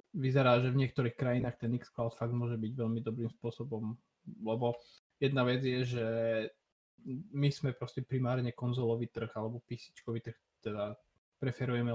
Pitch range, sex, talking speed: 115-130 Hz, male, 145 wpm